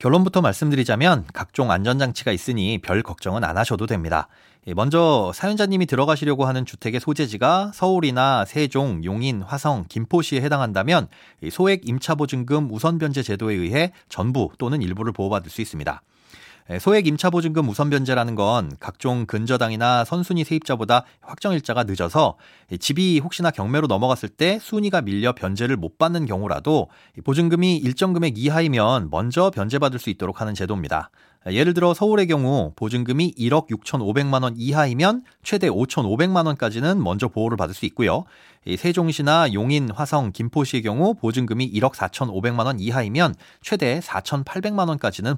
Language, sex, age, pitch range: Korean, male, 30-49, 110-160 Hz